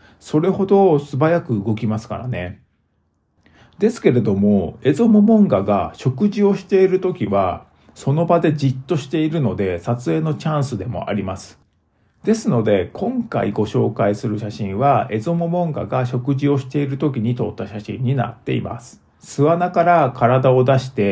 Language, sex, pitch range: Japanese, male, 105-165 Hz